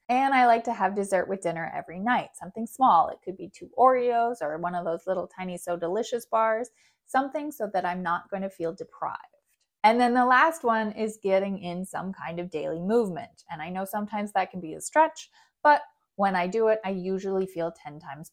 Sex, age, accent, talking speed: female, 30-49, American, 220 wpm